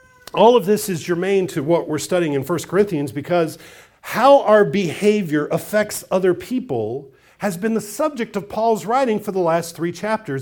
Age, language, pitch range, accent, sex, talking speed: 50-69, English, 145-210 Hz, American, male, 180 wpm